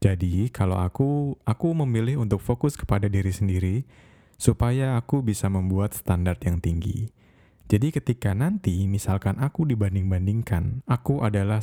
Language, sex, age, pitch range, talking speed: Indonesian, male, 20-39, 95-125 Hz, 130 wpm